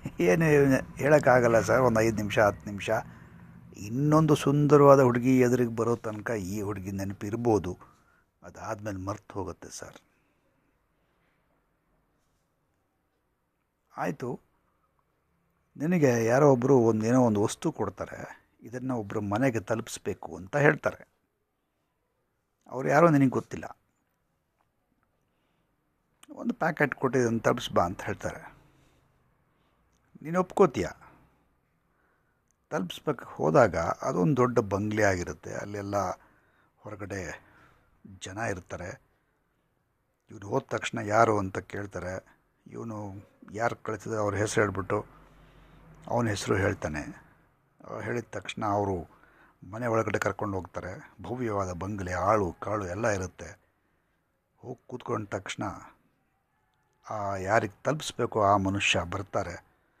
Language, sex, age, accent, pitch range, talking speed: English, male, 60-79, Indian, 100-125 Hz, 35 wpm